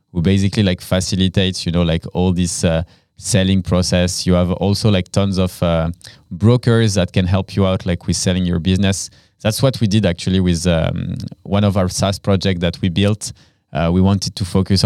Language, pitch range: English, 90-105 Hz